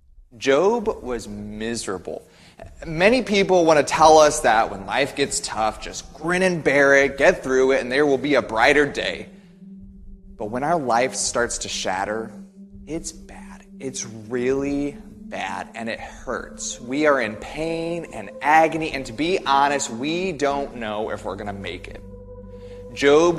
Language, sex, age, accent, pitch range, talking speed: English, male, 30-49, American, 105-160 Hz, 165 wpm